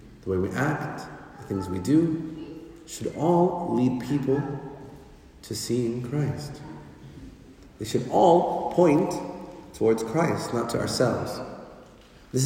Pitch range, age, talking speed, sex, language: 110-150 Hz, 30-49, 120 wpm, male, English